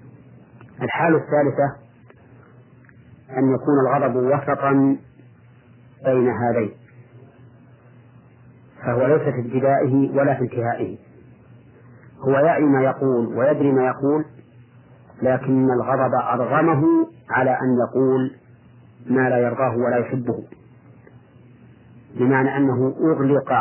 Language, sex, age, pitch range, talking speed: Arabic, male, 40-59, 120-135 Hz, 95 wpm